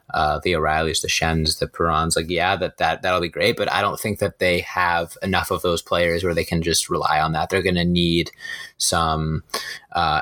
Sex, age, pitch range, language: male, 20-39, 85-100 Hz, English